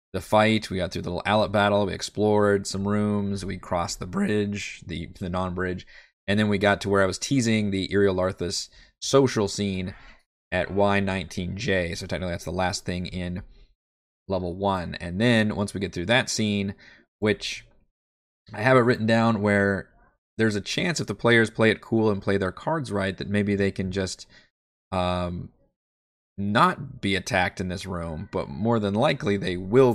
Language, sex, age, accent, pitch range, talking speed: English, male, 20-39, American, 90-105 Hz, 180 wpm